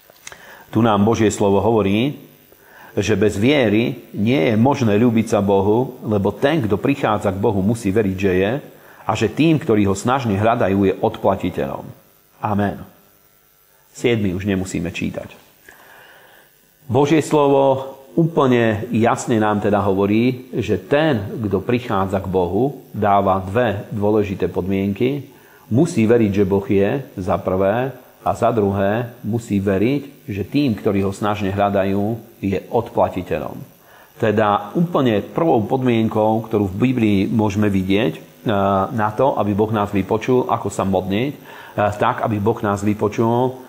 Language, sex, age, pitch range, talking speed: Slovak, male, 40-59, 100-125 Hz, 135 wpm